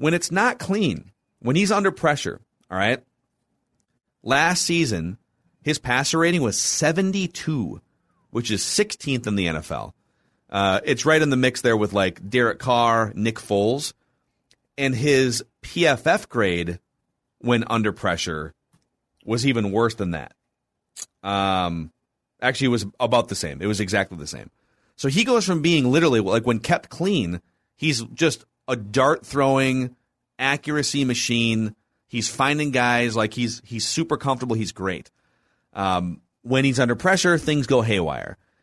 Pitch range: 110-150 Hz